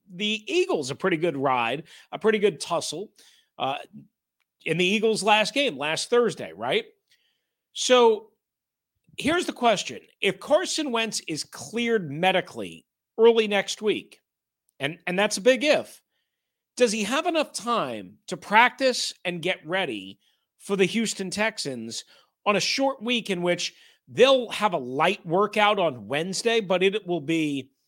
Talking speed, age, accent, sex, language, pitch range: 150 wpm, 40-59, American, male, English, 180-240 Hz